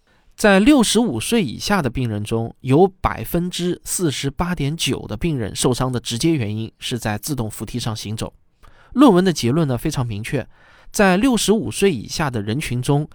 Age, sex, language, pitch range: 20-39, male, Chinese, 120-175 Hz